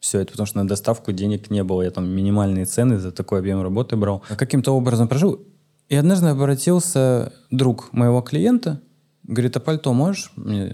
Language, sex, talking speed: Russian, male, 180 wpm